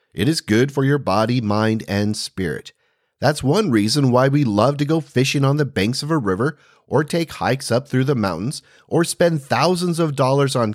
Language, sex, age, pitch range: English, male, 30-49, 110-145 Hz